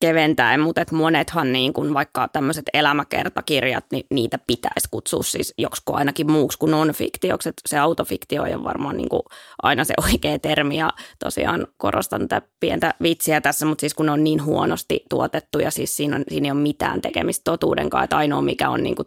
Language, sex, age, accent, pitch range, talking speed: Finnish, female, 20-39, native, 150-165 Hz, 175 wpm